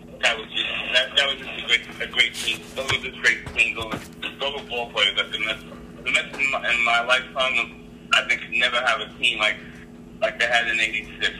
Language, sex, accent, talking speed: English, male, American, 235 wpm